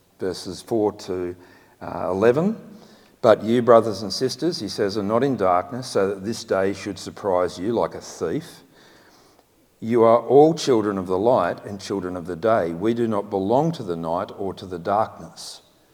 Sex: male